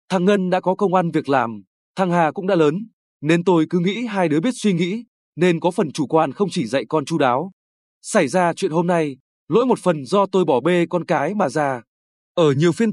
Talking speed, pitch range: 240 wpm, 150-200 Hz